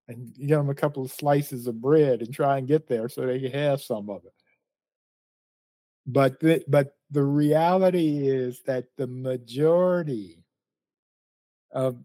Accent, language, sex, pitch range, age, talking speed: American, English, male, 125-150 Hz, 50-69, 160 wpm